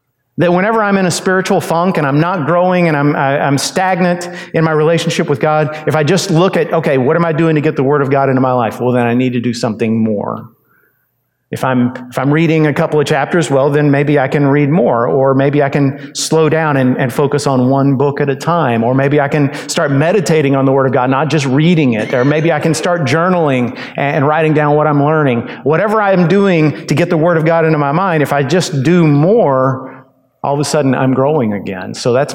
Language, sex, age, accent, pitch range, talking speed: English, male, 50-69, American, 130-160 Hz, 245 wpm